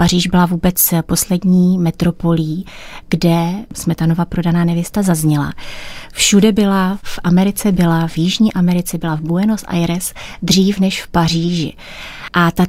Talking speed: 130 wpm